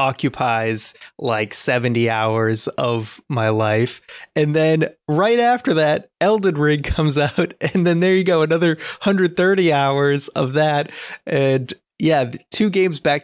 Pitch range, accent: 120-150 Hz, American